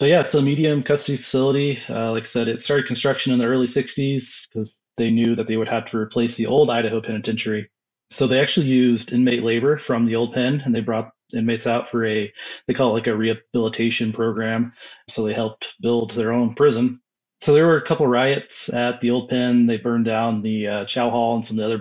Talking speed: 235 wpm